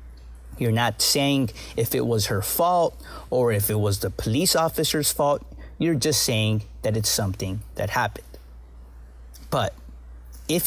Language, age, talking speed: English, 30-49, 145 wpm